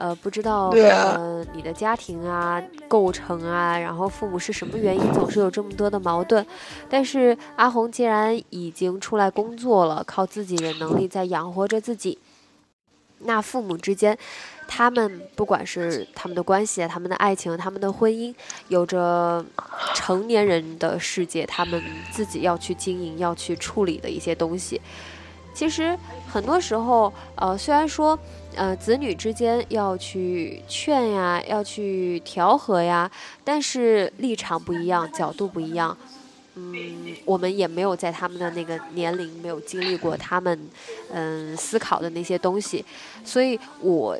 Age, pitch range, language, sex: 10-29, 175-220 Hz, Chinese, female